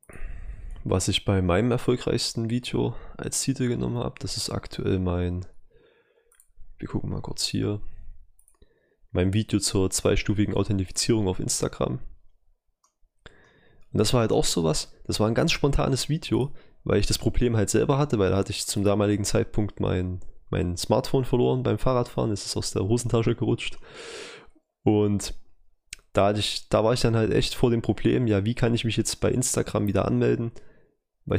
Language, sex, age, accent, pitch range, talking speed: German, male, 20-39, German, 95-120 Hz, 165 wpm